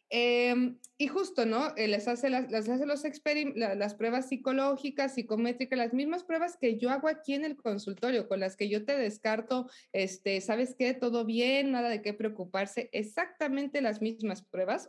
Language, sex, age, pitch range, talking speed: Spanish, female, 20-39, 210-270 Hz, 180 wpm